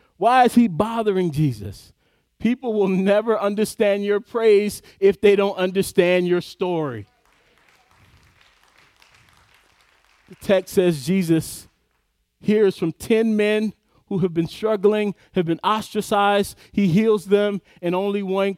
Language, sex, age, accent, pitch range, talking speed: English, male, 40-59, American, 165-215 Hz, 125 wpm